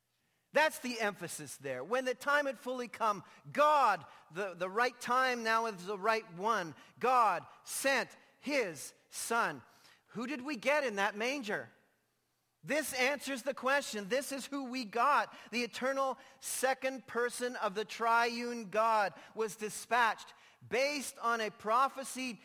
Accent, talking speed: American, 145 wpm